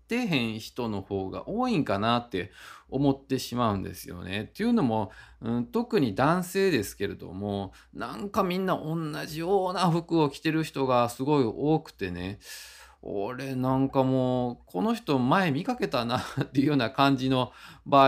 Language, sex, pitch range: Japanese, male, 105-175 Hz